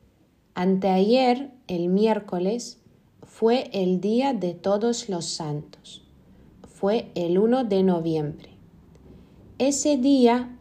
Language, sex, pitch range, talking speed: Spanish, female, 170-230 Hz, 95 wpm